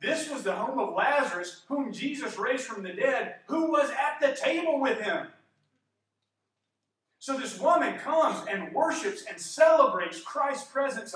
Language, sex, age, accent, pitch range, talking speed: English, male, 40-59, American, 190-300 Hz, 155 wpm